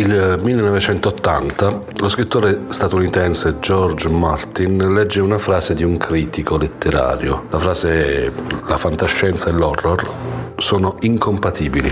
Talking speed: 115 wpm